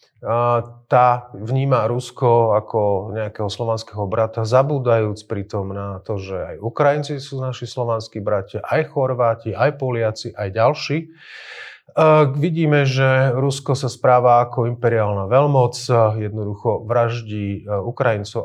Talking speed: 115 wpm